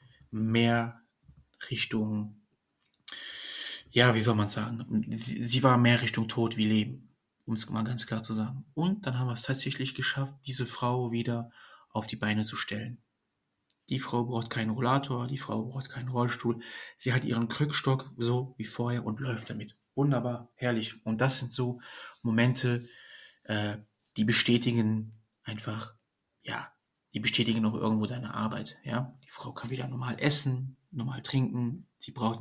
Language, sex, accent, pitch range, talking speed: German, male, German, 110-125 Hz, 160 wpm